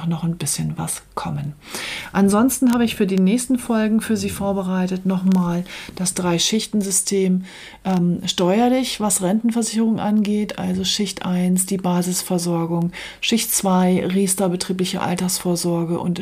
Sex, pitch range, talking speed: female, 170-190 Hz, 125 wpm